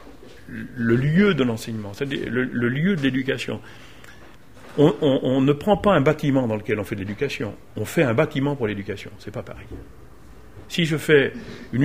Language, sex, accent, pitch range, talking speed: French, male, French, 105-145 Hz, 185 wpm